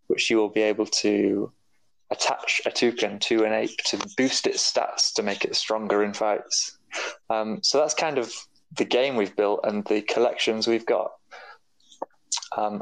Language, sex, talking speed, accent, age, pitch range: English, male, 175 wpm, British, 20-39, 110-135 Hz